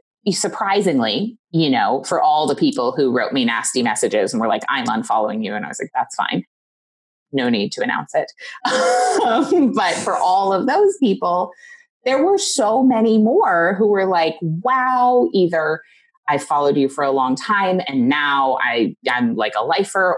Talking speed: 175 wpm